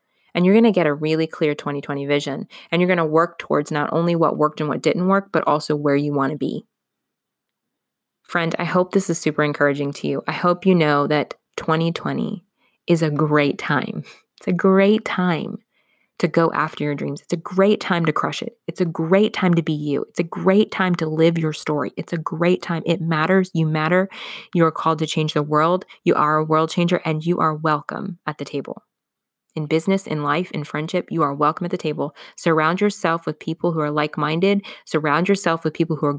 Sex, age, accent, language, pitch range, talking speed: female, 20-39, American, English, 150-180 Hz, 220 wpm